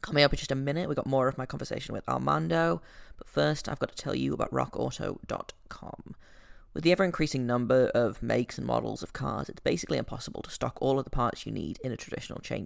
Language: English